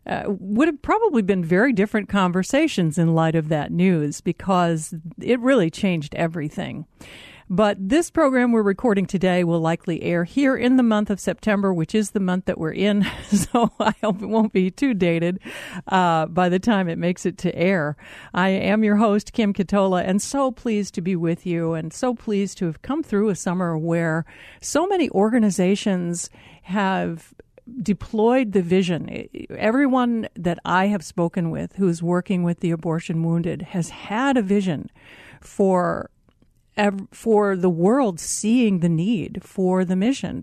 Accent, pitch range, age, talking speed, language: American, 175-215 Hz, 50-69, 170 wpm, English